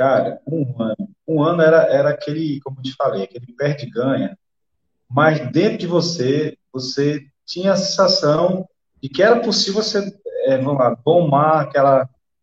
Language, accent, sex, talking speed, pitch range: Portuguese, Brazilian, male, 150 wpm, 130-180 Hz